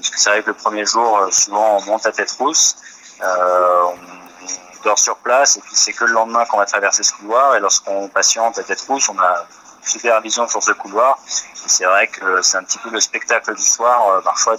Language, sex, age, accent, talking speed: French, male, 30-49, French, 230 wpm